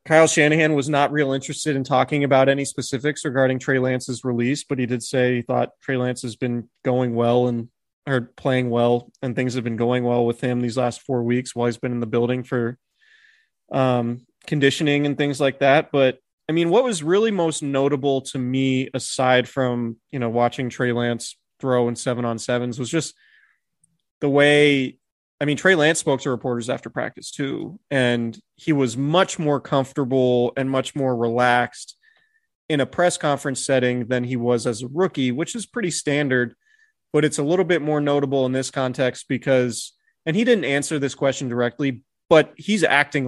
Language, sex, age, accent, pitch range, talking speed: English, male, 30-49, American, 125-150 Hz, 190 wpm